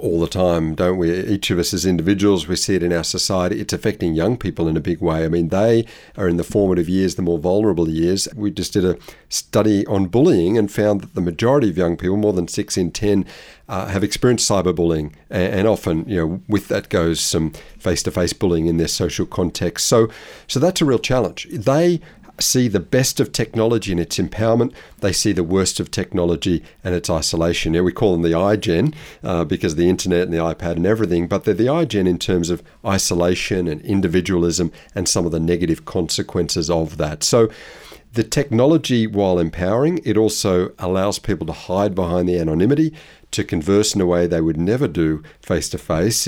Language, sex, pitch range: English, male, 85-105 Hz